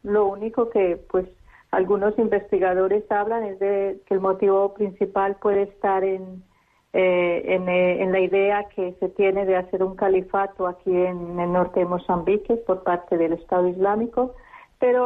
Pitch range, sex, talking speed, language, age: 185-210 Hz, female, 165 wpm, Spanish, 40-59